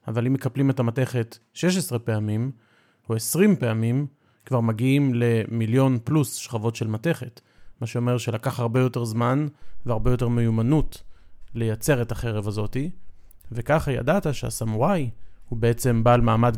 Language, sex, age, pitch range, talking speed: Hebrew, male, 30-49, 115-145 Hz, 135 wpm